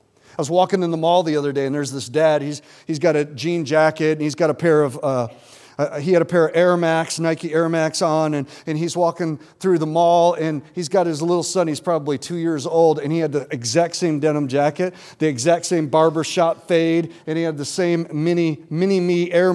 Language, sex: English, male